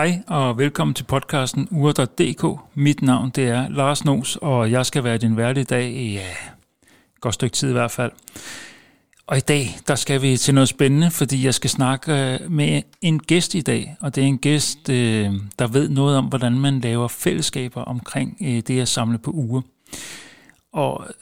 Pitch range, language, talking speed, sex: 120-140 Hz, Danish, 180 wpm, male